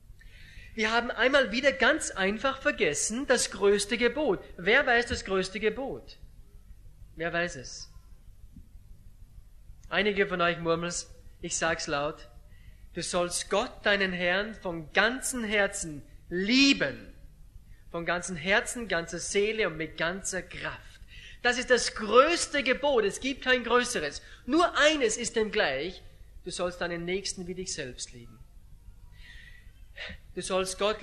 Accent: German